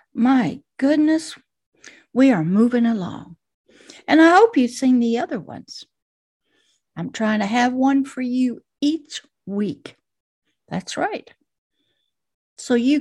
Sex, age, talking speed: female, 60-79, 125 wpm